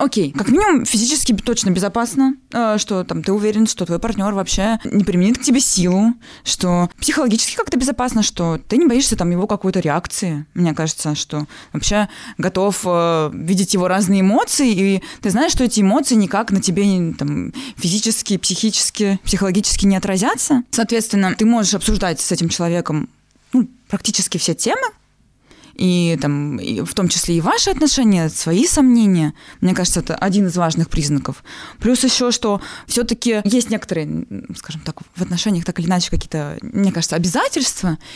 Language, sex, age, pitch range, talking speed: Russian, female, 20-39, 175-230 Hz, 160 wpm